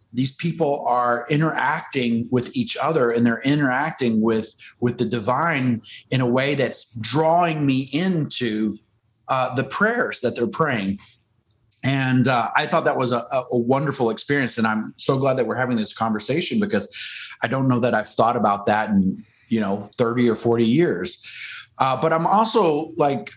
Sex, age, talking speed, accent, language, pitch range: male, 30-49, 170 wpm, American, English, 110-140 Hz